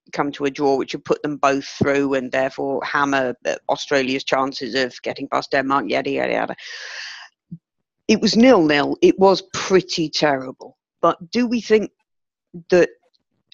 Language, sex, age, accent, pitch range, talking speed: English, female, 40-59, British, 140-170 Hz, 150 wpm